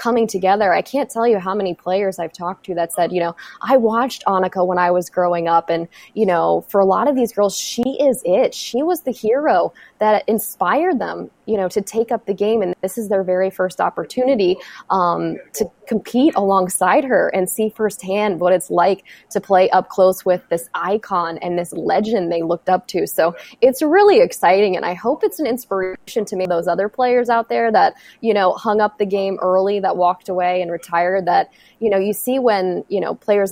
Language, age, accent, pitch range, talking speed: English, 20-39, American, 180-225 Hz, 215 wpm